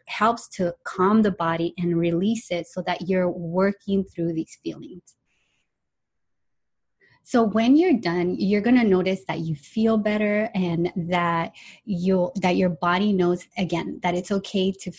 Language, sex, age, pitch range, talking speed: English, female, 30-49, 175-205 Hz, 155 wpm